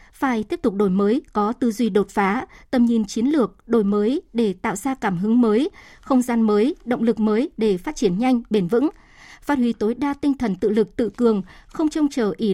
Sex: male